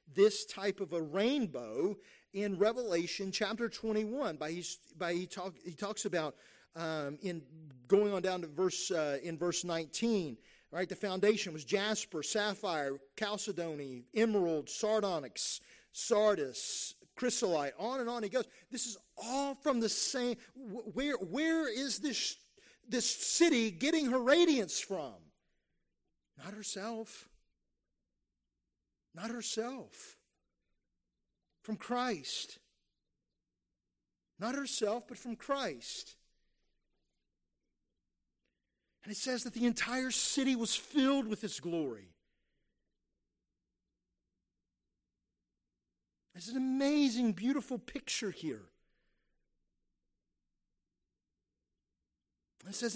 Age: 40-59